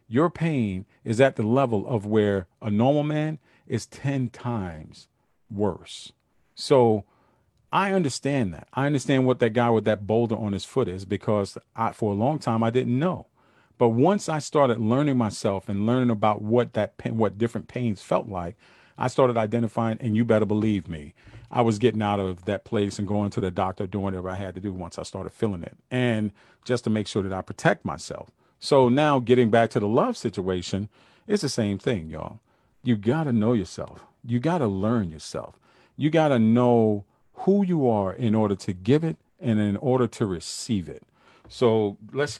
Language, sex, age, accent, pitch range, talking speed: English, male, 40-59, American, 105-125 Hz, 190 wpm